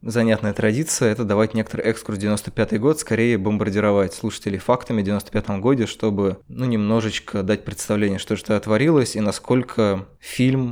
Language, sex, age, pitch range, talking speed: Russian, male, 20-39, 105-115 Hz, 155 wpm